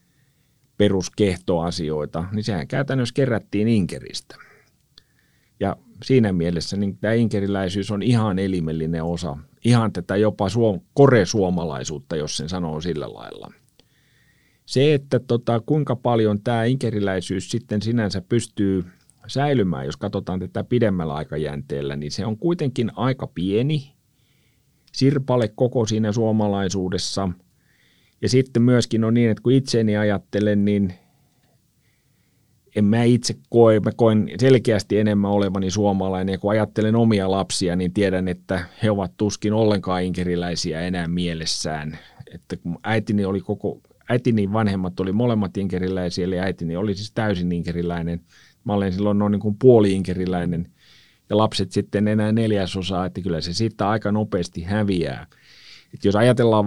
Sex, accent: male, native